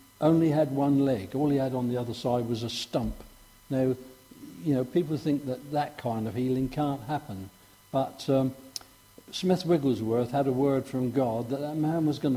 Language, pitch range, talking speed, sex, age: English, 120-145 Hz, 195 wpm, male, 60-79